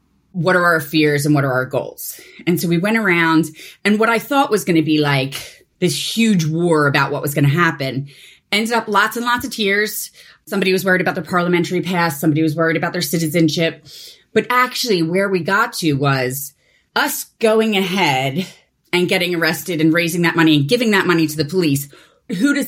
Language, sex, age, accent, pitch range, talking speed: English, female, 30-49, American, 150-195 Hz, 205 wpm